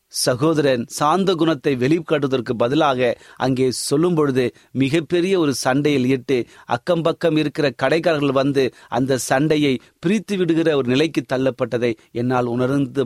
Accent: native